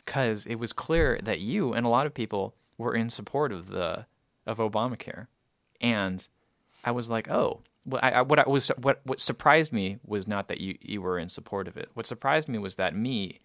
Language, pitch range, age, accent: English, 95-125 Hz, 20-39, American